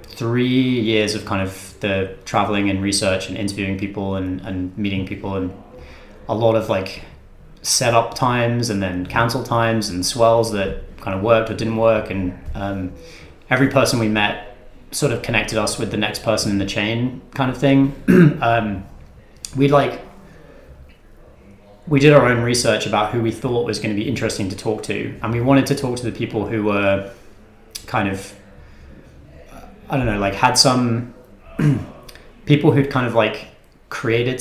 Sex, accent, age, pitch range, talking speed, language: male, British, 20-39, 100-115 Hz, 175 wpm, English